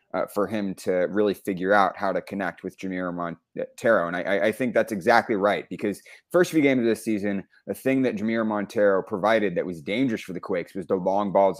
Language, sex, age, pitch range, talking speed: English, male, 30-49, 95-115 Hz, 220 wpm